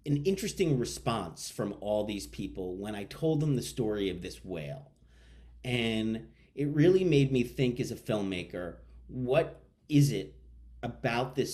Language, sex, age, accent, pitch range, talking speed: English, male, 40-59, American, 100-135 Hz, 155 wpm